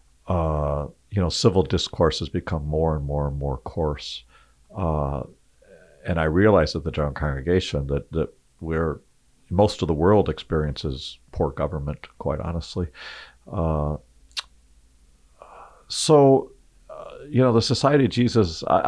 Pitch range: 75-95 Hz